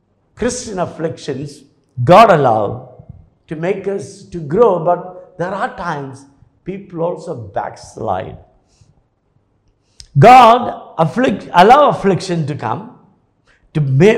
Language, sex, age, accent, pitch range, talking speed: English, male, 60-79, Indian, 150-220 Hz, 95 wpm